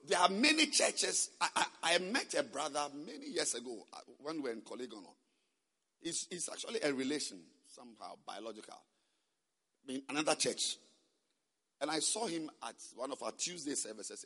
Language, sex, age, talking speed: English, male, 50-69, 160 wpm